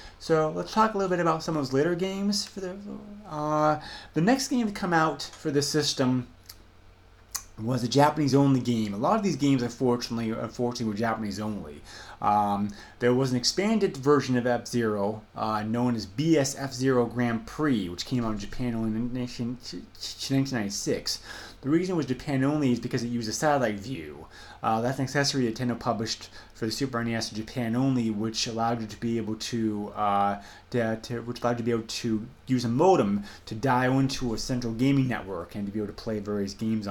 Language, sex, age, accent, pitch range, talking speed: English, male, 30-49, American, 105-130 Hz, 195 wpm